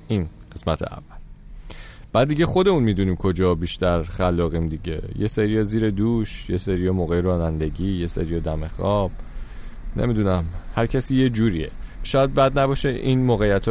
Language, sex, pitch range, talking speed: Persian, male, 85-110 Hz, 150 wpm